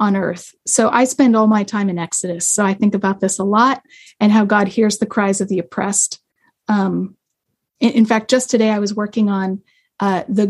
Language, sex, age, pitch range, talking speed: English, female, 30-49, 200-235 Hz, 215 wpm